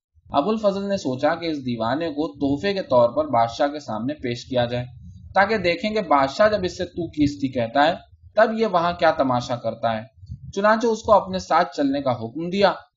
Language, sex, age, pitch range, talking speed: Urdu, male, 20-39, 125-195 Hz, 155 wpm